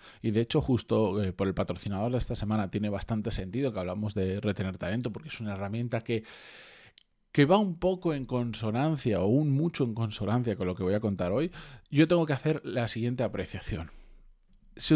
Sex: male